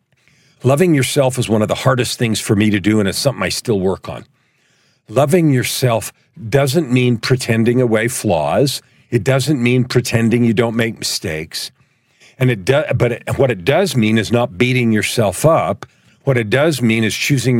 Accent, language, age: American, English, 50-69